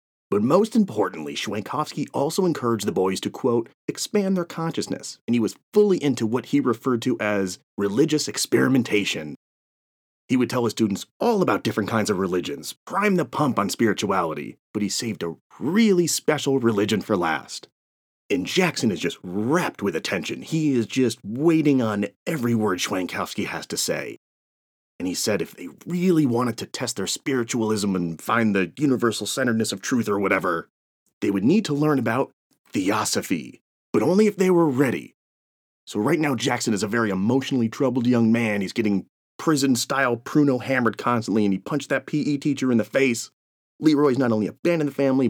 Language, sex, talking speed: English, male, 175 wpm